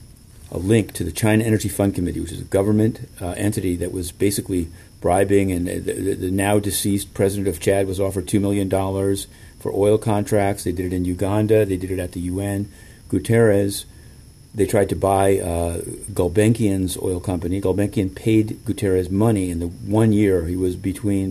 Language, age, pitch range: English, 40-59, 90-110 Hz